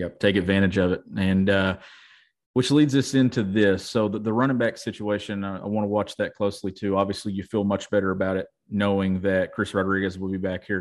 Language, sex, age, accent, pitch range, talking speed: English, male, 40-59, American, 95-110 Hz, 230 wpm